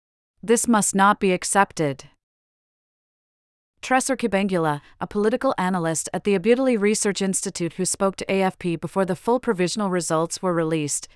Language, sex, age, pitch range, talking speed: English, female, 40-59, 165-200 Hz, 140 wpm